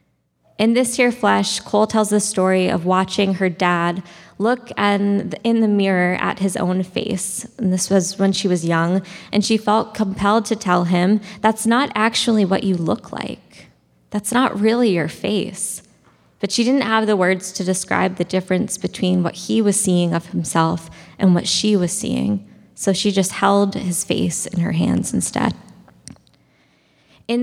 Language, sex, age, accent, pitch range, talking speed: English, female, 20-39, American, 175-210 Hz, 175 wpm